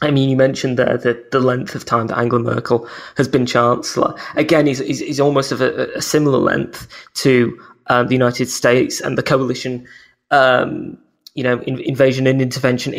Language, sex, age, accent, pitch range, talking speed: English, male, 20-39, British, 125-140 Hz, 180 wpm